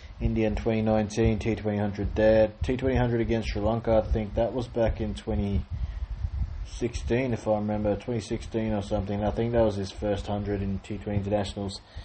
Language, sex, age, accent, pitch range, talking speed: English, male, 20-39, Australian, 100-110 Hz, 195 wpm